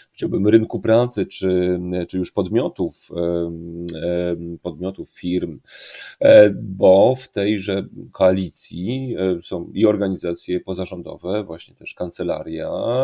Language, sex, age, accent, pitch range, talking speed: Polish, male, 40-59, native, 90-110 Hz, 85 wpm